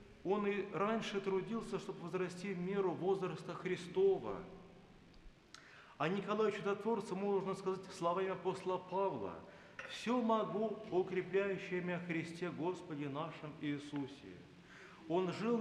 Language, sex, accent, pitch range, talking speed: Russian, male, native, 180-205 Hz, 110 wpm